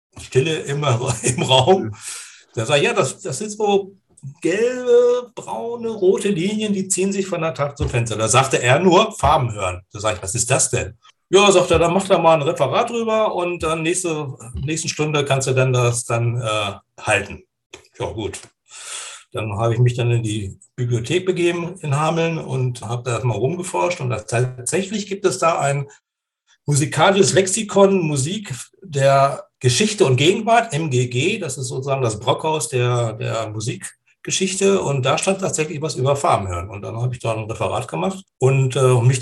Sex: male